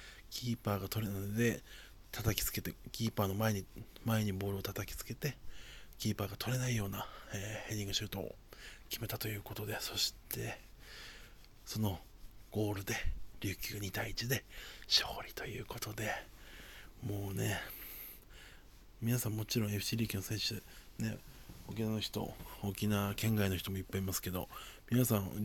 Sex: male